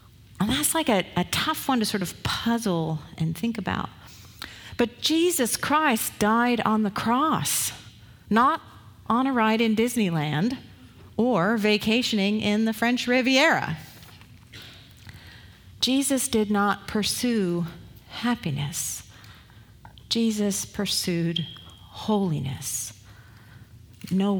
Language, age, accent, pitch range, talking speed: English, 50-69, American, 140-220 Hz, 105 wpm